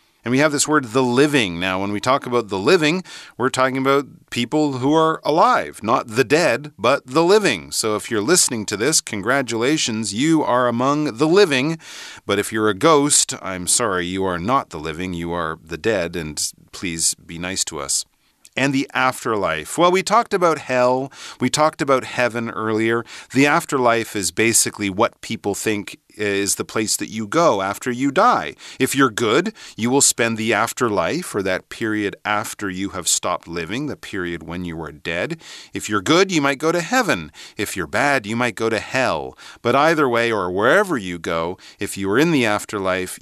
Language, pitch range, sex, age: Chinese, 95-140 Hz, male, 40-59